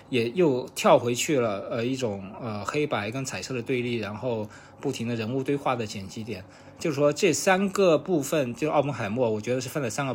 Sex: male